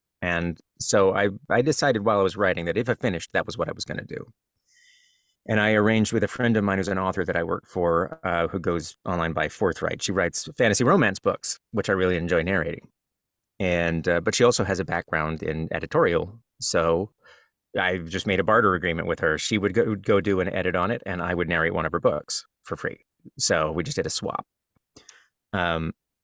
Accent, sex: American, male